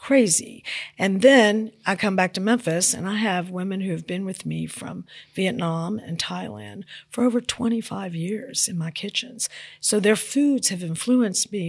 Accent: American